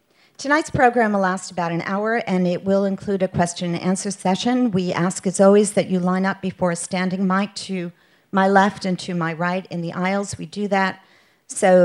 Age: 50-69